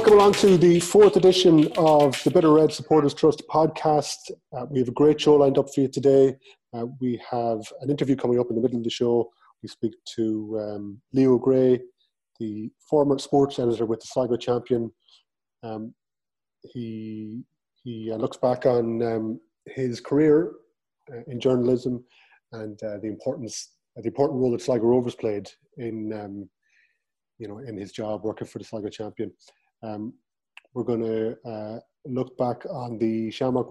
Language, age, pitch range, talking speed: English, 30-49, 115-145 Hz, 175 wpm